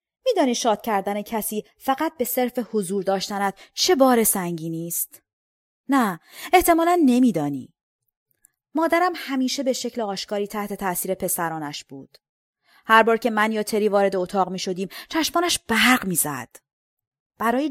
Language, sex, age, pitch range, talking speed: Persian, female, 30-49, 190-255 Hz, 125 wpm